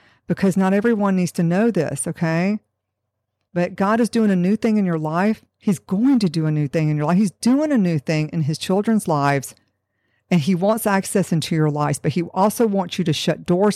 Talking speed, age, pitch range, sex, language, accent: 225 wpm, 50-69, 145-185 Hz, female, English, American